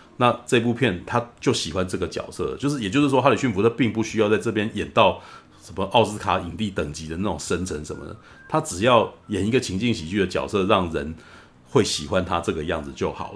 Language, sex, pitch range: Chinese, male, 90-120 Hz